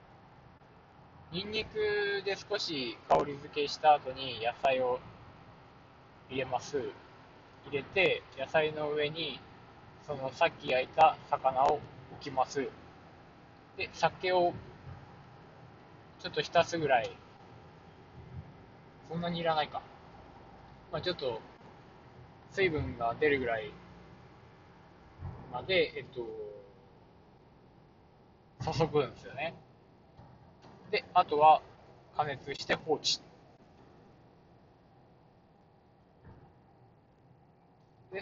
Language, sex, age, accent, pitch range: Japanese, male, 20-39, native, 135-190 Hz